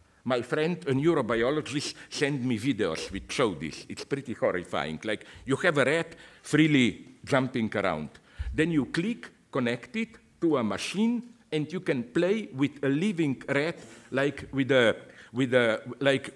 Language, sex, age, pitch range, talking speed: English, male, 50-69, 115-170 Hz, 160 wpm